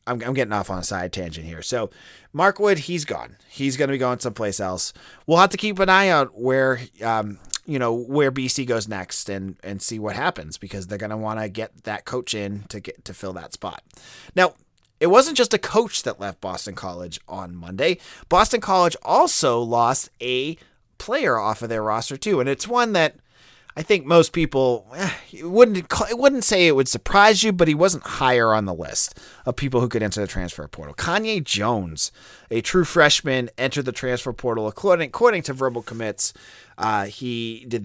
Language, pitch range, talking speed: English, 105-155 Hz, 205 wpm